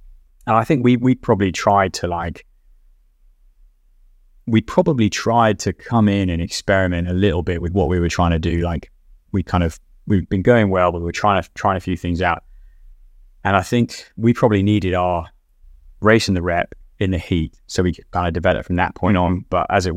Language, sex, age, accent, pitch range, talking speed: English, male, 20-39, British, 85-95 Hz, 215 wpm